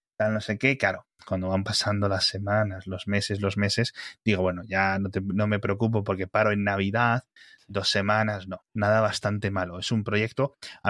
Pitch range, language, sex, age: 100-115 Hz, Spanish, male, 20-39